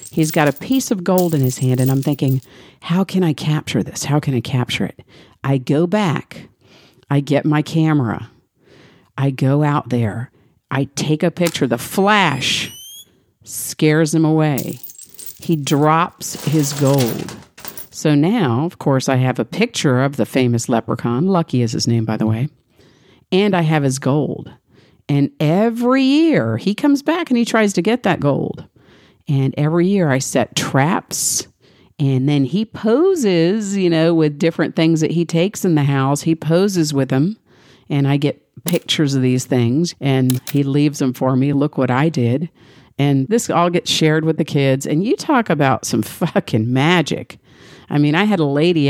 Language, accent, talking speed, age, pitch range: English, American, 180 wpm, 50-69, 130-170 Hz